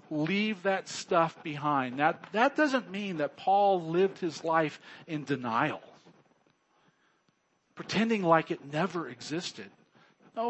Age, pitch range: 50-69, 145-195 Hz